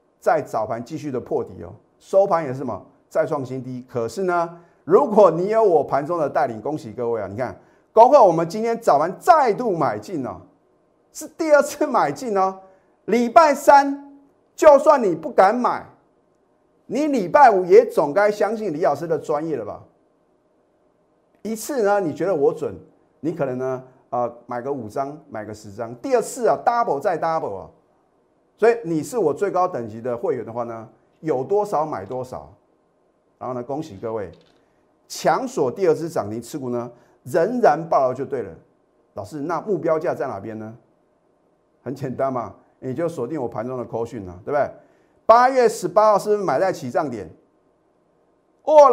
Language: Chinese